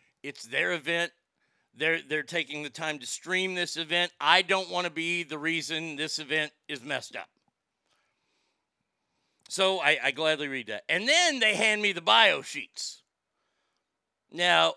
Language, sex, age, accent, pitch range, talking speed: English, male, 50-69, American, 170-220 Hz, 160 wpm